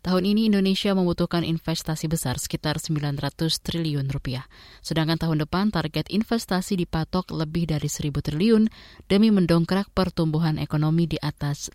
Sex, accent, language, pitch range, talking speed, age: female, native, Indonesian, 155-185 Hz, 135 wpm, 20-39